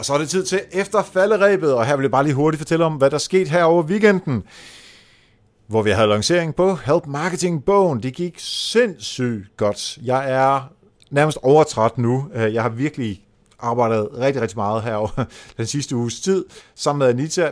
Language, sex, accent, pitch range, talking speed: Danish, male, native, 110-155 Hz, 185 wpm